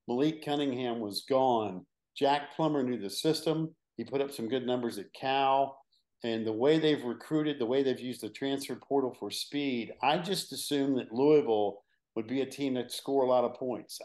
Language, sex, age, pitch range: English, male, 50-69, 120-150 Hz